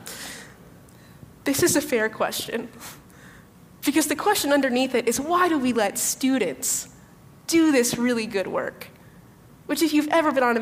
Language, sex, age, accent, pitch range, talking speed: English, female, 20-39, American, 215-275 Hz, 160 wpm